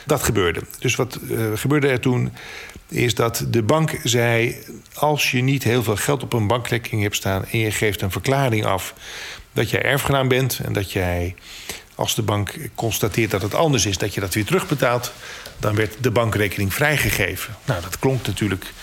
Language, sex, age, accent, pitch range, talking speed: Dutch, male, 40-59, Dutch, 105-130 Hz, 190 wpm